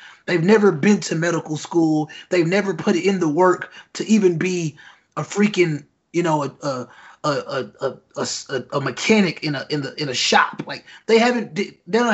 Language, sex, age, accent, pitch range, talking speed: English, male, 20-39, American, 155-190 Hz, 190 wpm